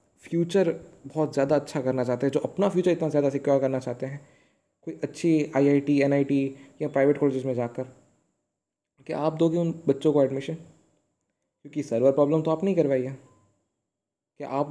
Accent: native